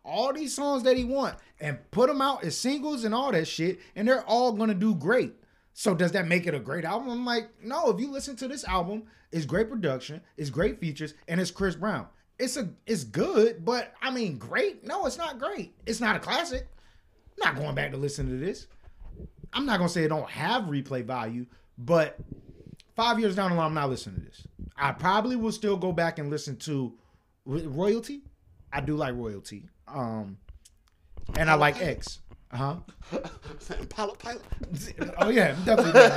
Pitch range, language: 135-225 Hz, English